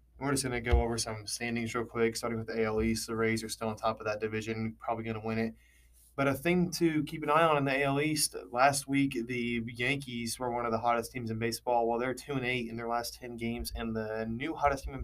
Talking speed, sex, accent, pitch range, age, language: 275 wpm, male, American, 110-125 Hz, 20-39, English